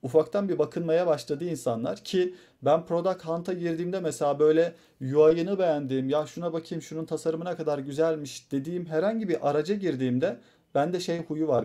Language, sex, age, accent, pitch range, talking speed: Turkish, male, 40-59, native, 135-175 Hz, 155 wpm